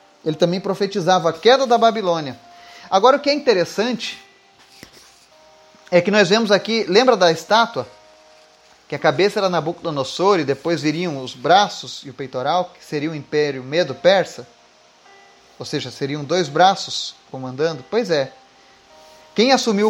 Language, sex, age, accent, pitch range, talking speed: Portuguese, male, 30-49, Brazilian, 155-220 Hz, 145 wpm